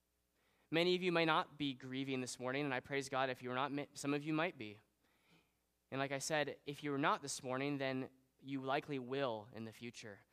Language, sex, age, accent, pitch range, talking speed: English, male, 20-39, American, 115-155 Hz, 215 wpm